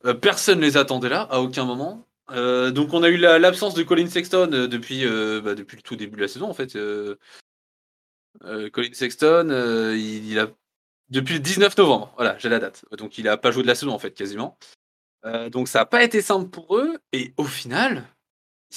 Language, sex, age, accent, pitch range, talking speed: French, male, 20-39, French, 125-170 Hz, 220 wpm